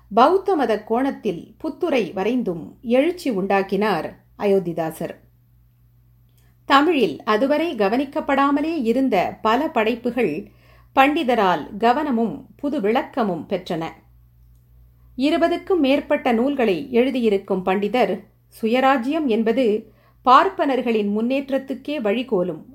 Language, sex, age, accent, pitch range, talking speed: Tamil, female, 50-69, native, 180-265 Hz, 70 wpm